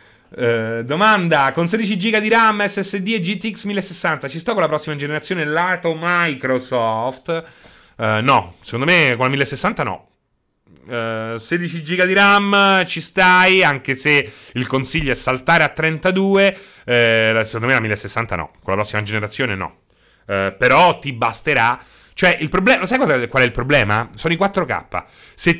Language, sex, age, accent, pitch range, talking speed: Italian, male, 30-49, native, 115-175 Hz, 160 wpm